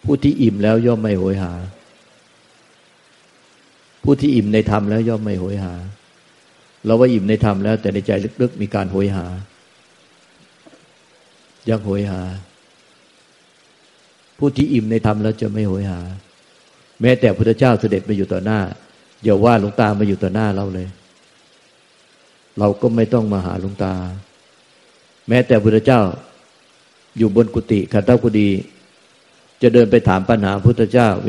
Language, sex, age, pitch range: Thai, male, 50-69, 100-115 Hz